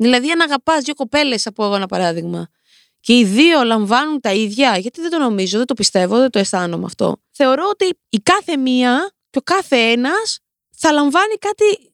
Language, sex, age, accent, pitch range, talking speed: Greek, female, 20-39, native, 215-295 Hz, 195 wpm